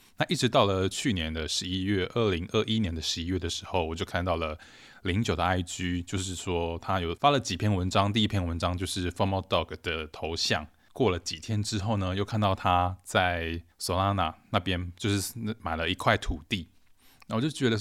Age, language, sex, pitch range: 20-39, Chinese, male, 85-105 Hz